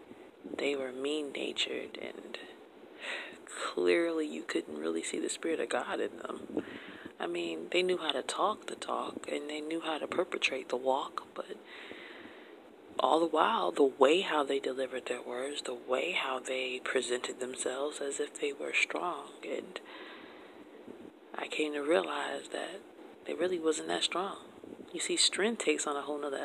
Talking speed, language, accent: 165 wpm, English, American